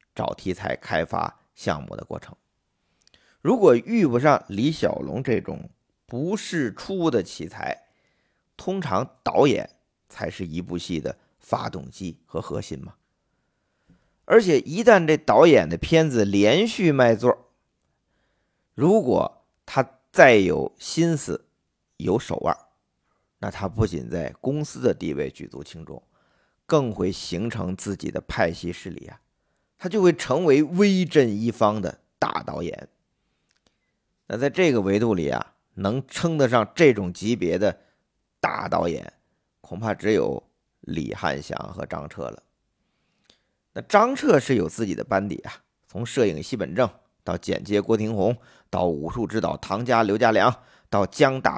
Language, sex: Chinese, male